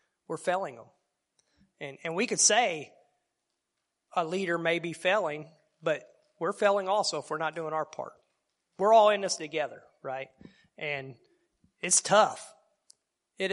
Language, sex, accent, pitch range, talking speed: English, male, American, 145-190 Hz, 145 wpm